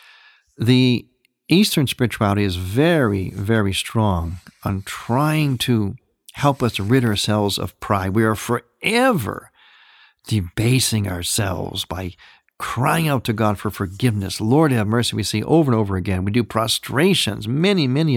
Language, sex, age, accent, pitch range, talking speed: English, male, 50-69, American, 100-140 Hz, 140 wpm